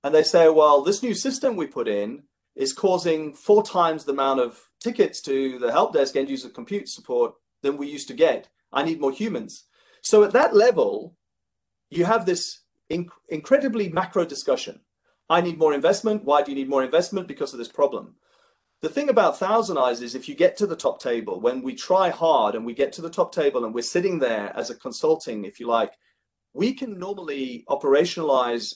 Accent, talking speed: British, 205 wpm